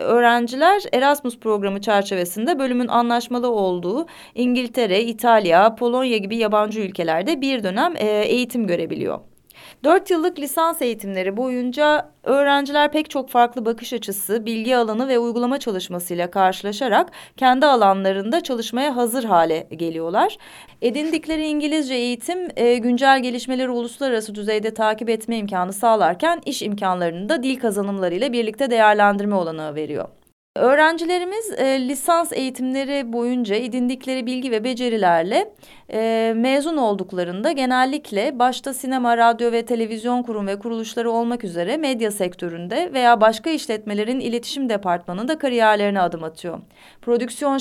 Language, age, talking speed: Turkish, 30-49, 120 wpm